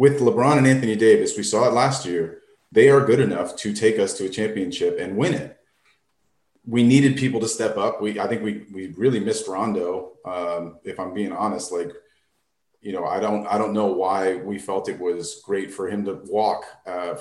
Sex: male